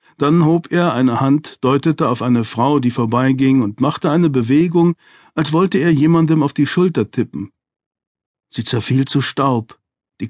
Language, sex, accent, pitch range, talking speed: German, male, German, 120-155 Hz, 165 wpm